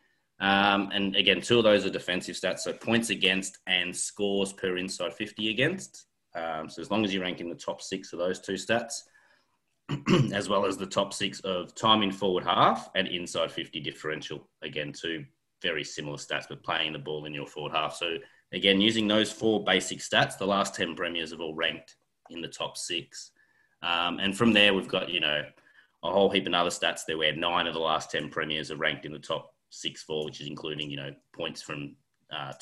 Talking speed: 215 wpm